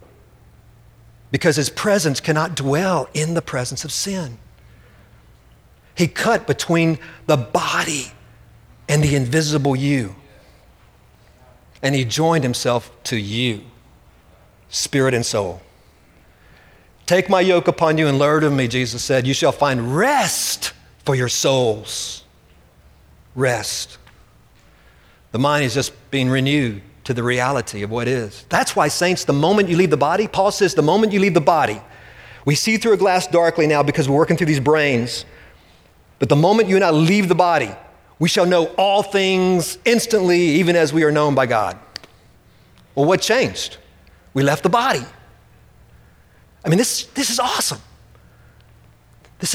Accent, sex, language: American, male, English